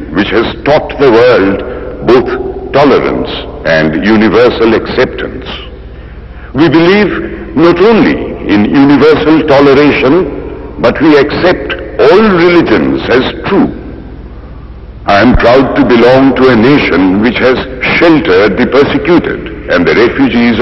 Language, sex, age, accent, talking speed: Malayalam, male, 60-79, native, 115 wpm